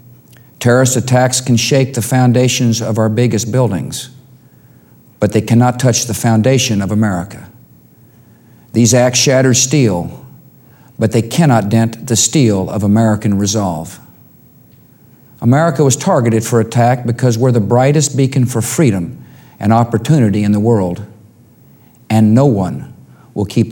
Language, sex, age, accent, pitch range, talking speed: English, male, 50-69, American, 105-125 Hz, 135 wpm